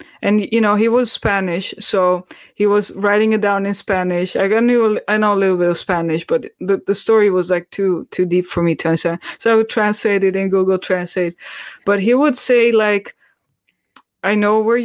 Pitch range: 175-205 Hz